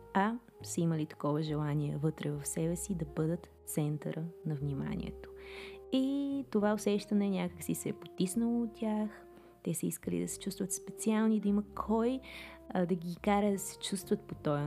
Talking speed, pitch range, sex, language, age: 170 wpm, 170-200 Hz, female, Bulgarian, 20-39